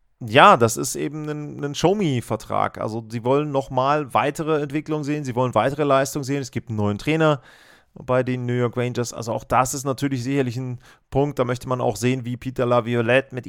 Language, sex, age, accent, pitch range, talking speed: German, male, 30-49, German, 120-150 Hz, 210 wpm